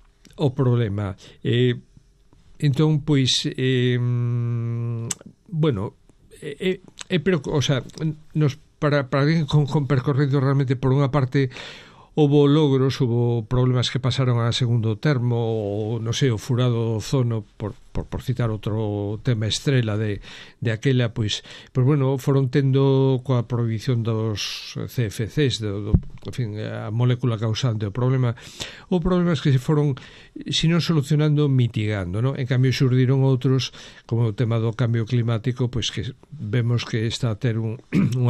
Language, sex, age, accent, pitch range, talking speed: Spanish, male, 60-79, Spanish, 115-140 Hz, 150 wpm